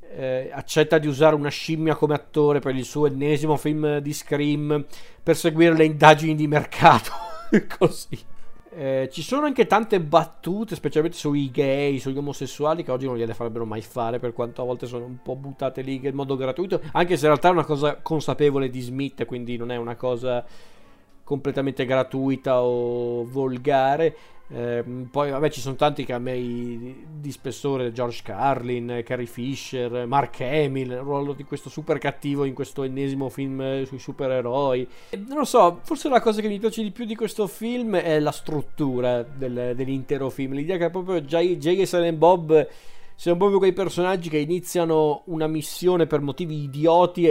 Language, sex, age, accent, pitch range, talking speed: Italian, male, 40-59, native, 135-165 Hz, 180 wpm